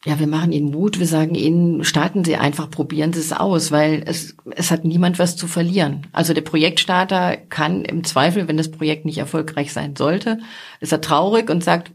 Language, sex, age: German, female, 40-59